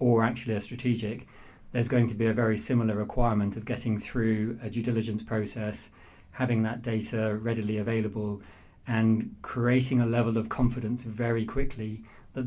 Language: English